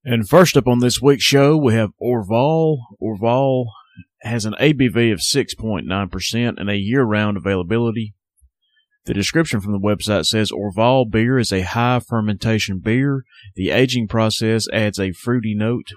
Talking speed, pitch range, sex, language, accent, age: 145 wpm, 105-120 Hz, male, English, American, 30-49